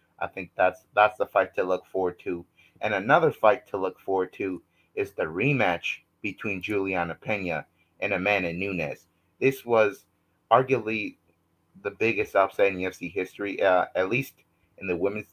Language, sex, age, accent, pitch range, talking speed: English, male, 30-49, American, 90-115 Hz, 160 wpm